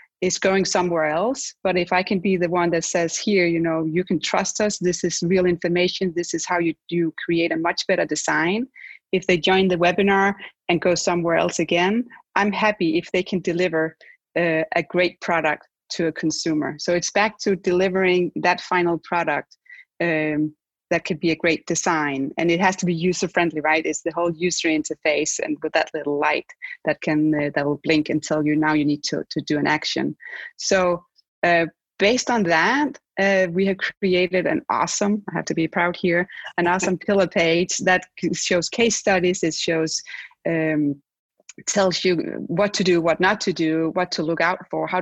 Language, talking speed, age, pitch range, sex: English, 200 wpm, 30-49, 165-190 Hz, female